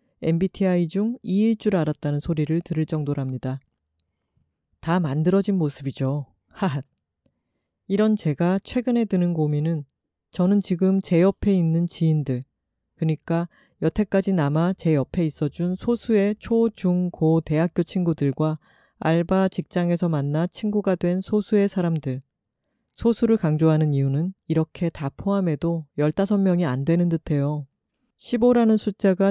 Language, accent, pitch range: Korean, native, 155-195 Hz